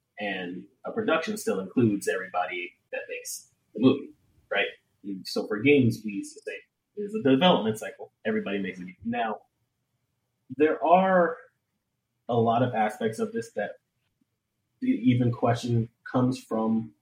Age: 30-49